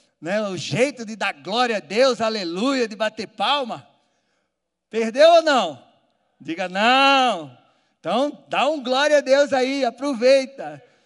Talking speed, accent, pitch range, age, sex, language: 135 wpm, Brazilian, 180-235 Hz, 40-59, male, Portuguese